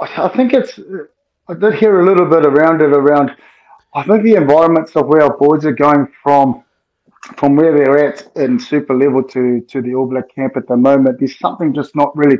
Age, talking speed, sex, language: 20-39, 210 wpm, male, English